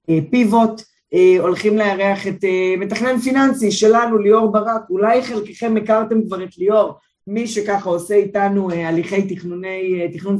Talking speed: 125 wpm